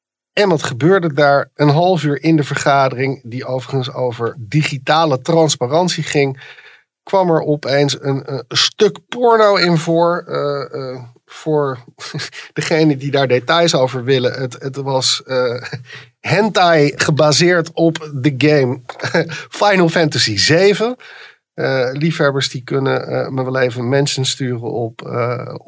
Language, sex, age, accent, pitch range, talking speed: Dutch, male, 50-69, Dutch, 115-155 Hz, 135 wpm